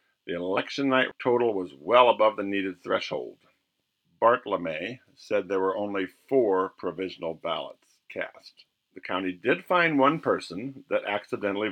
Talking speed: 145 wpm